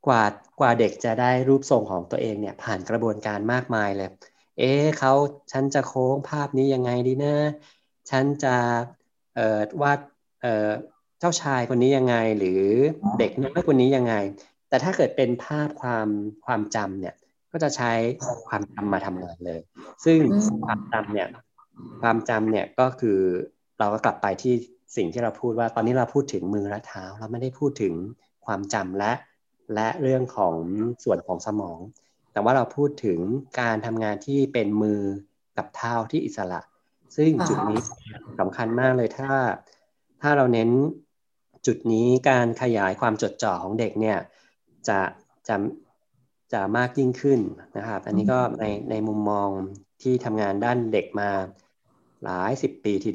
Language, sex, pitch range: Thai, male, 105-135 Hz